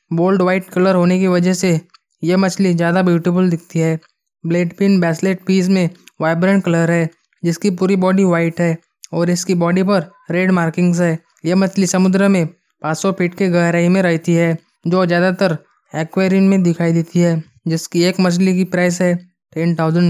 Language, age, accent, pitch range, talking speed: Hindi, 20-39, native, 165-185 Hz, 175 wpm